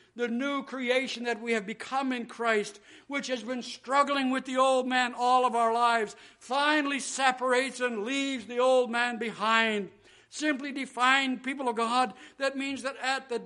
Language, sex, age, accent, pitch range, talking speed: English, male, 60-79, American, 240-275 Hz, 175 wpm